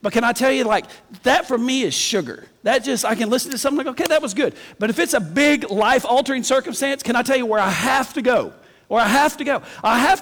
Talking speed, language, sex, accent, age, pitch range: 275 wpm, English, male, American, 50-69, 210-275 Hz